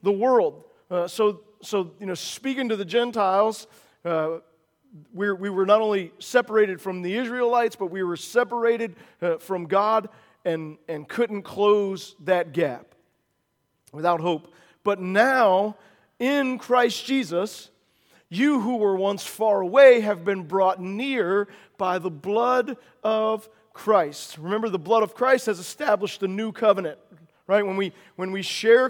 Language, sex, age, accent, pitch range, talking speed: English, male, 40-59, American, 190-235 Hz, 150 wpm